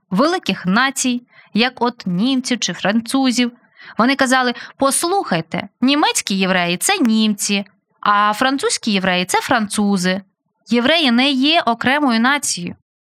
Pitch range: 205-270 Hz